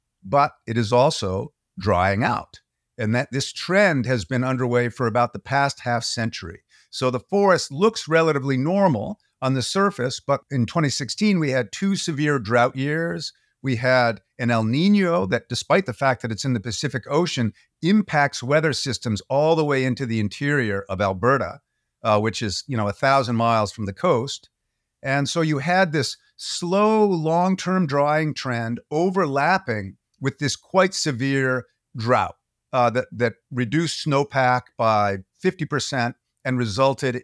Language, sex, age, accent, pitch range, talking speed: English, male, 50-69, American, 120-160 Hz, 160 wpm